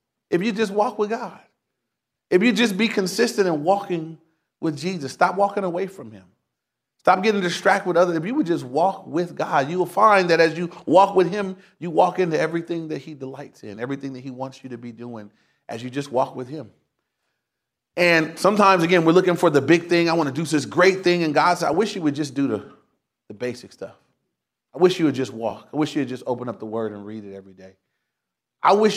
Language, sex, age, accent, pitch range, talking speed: English, male, 30-49, American, 145-190 Hz, 235 wpm